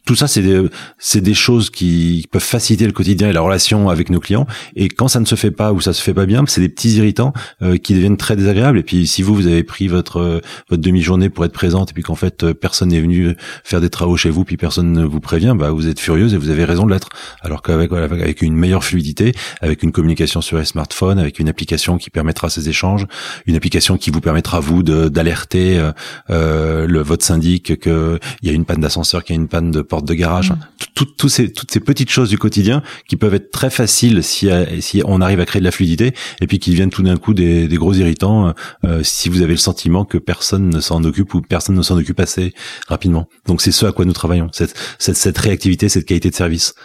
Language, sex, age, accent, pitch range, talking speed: French, male, 30-49, French, 85-100 Hz, 255 wpm